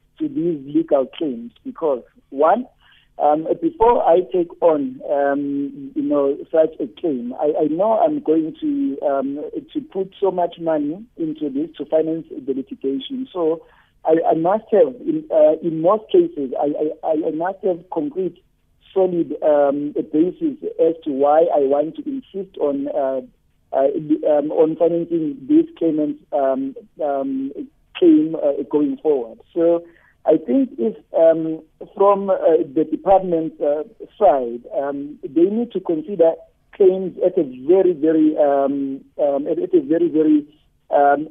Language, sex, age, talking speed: English, male, 50-69, 155 wpm